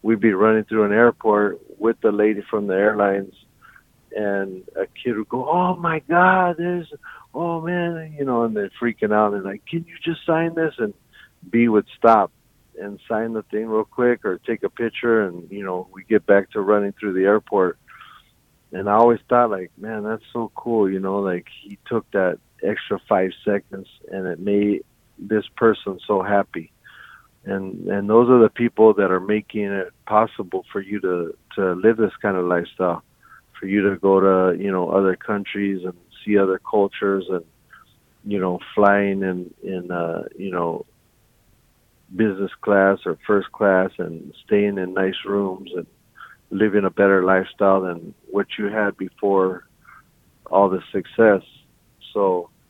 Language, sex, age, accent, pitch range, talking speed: English, male, 50-69, American, 95-115 Hz, 175 wpm